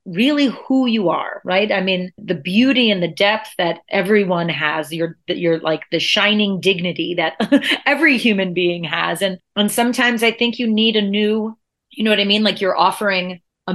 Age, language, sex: 30-49, English, female